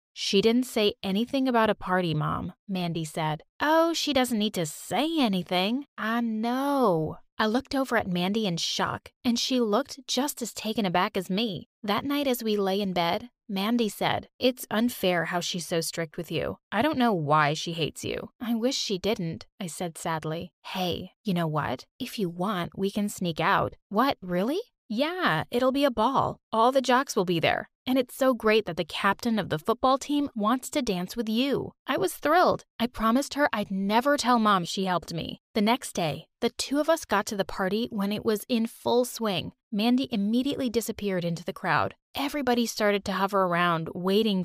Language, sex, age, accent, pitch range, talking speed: English, female, 20-39, American, 185-250 Hz, 200 wpm